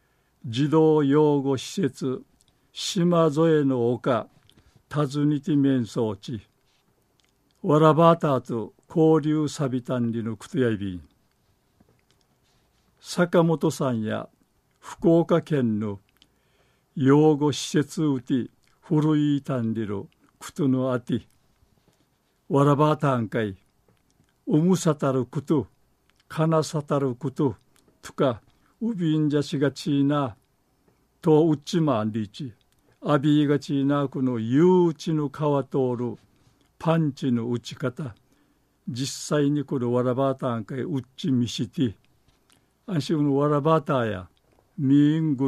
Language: Japanese